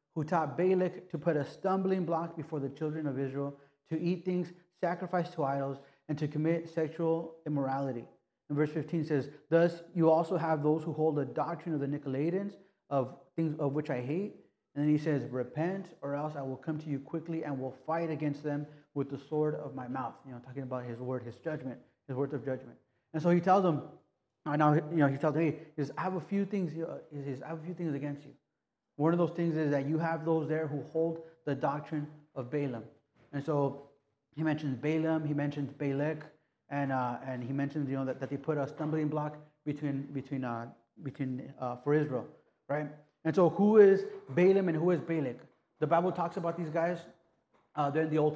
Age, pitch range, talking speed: 30-49, 140-165 Hz, 205 wpm